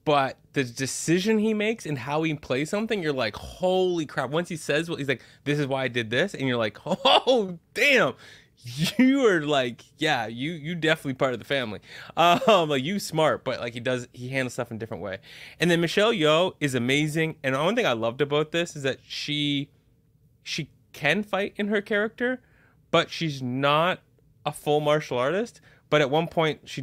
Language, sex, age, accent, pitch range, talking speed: English, male, 20-39, American, 130-175 Hz, 205 wpm